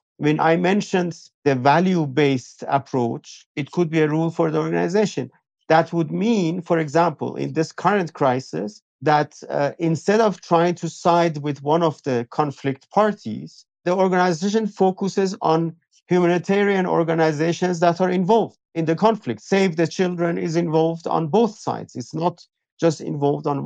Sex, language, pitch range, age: male, English, 145-185 Hz, 50-69